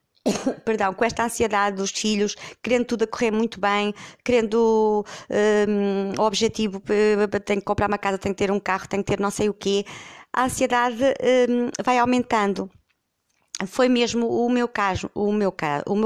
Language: Portuguese